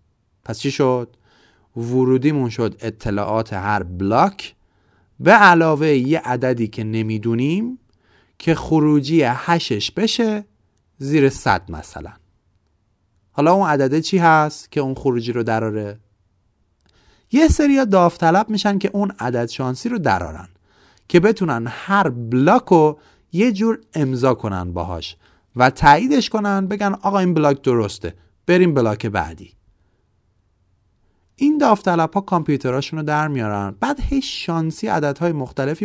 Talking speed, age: 125 wpm, 30-49